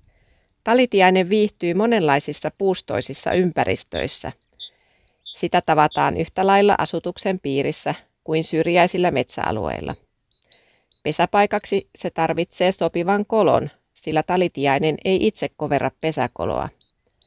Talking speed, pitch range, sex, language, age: 85 wpm, 150-185 Hz, female, Finnish, 40-59